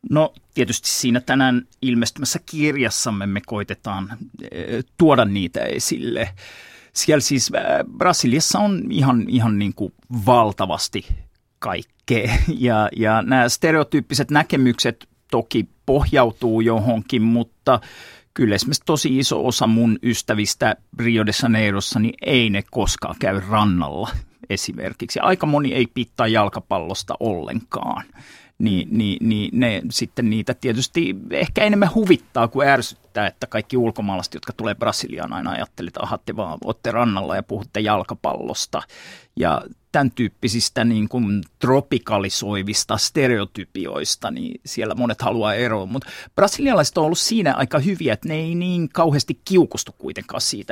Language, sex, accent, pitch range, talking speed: Finnish, male, native, 110-140 Hz, 125 wpm